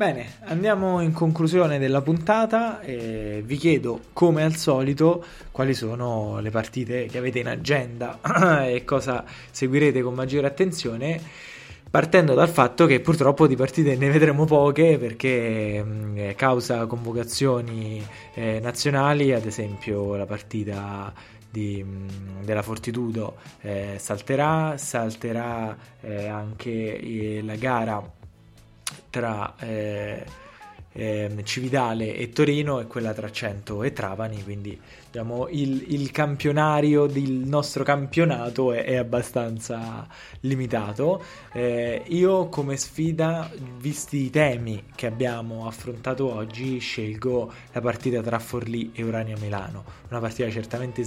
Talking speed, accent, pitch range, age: 120 wpm, native, 110-140 Hz, 20-39